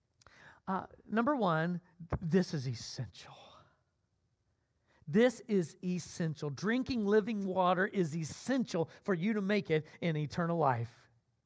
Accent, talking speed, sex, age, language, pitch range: American, 115 wpm, male, 40-59, English, 150-225 Hz